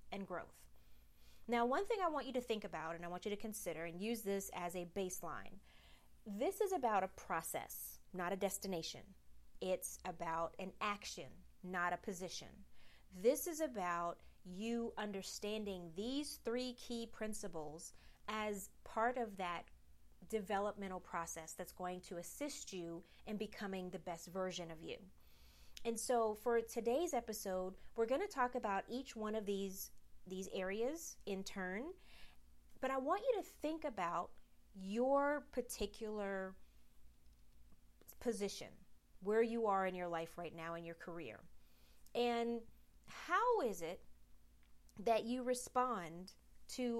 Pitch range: 175-235 Hz